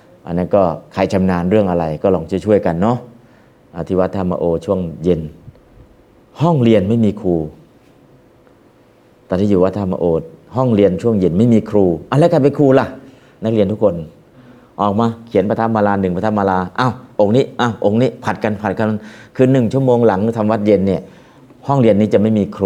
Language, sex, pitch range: Thai, male, 95-115 Hz